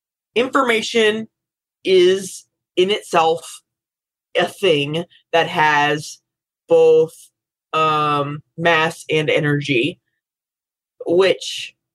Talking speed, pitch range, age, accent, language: 70 wpm, 145-175 Hz, 20-39, American, English